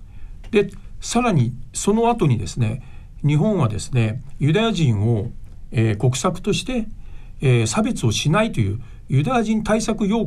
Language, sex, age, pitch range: Japanese, male, 50-69, 110-165 Hz